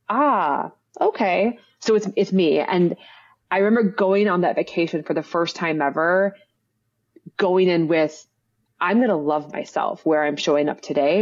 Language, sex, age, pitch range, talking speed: English, female, 20-39, 145-175 Hz, 165 wpm